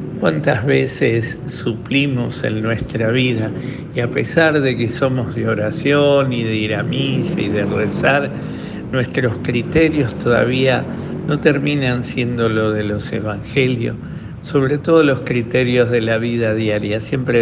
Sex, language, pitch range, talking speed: male, Spanish, 115-145 Hz, 140 wpm